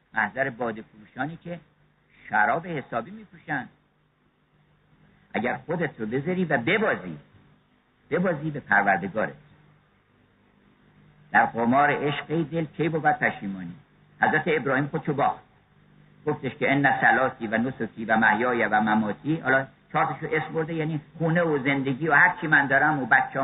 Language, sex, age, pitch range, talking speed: Persian, male, 50-69, 130-180 Hz, 140 wpm